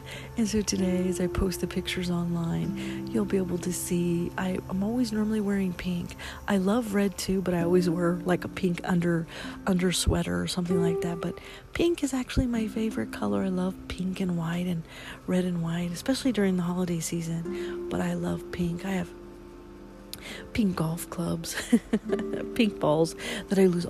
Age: 40-59